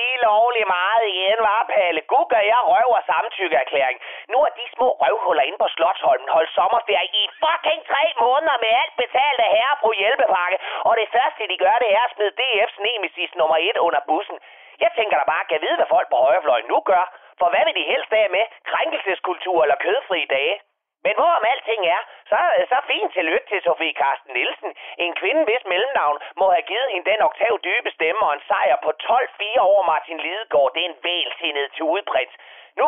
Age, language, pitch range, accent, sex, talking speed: 30-49, Danish, 175-255 Hz, native, male, 205 wpm